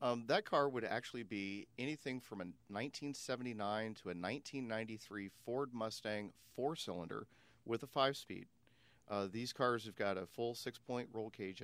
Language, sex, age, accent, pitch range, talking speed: English, male, 40-59, American, 105-125 Hz, 165 wpm